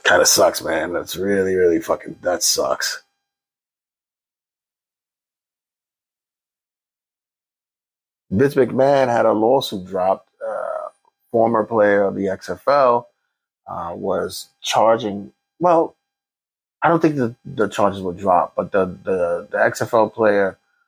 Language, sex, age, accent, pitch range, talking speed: English, male, 30-49, American, 95-130 Hz, 110 wpm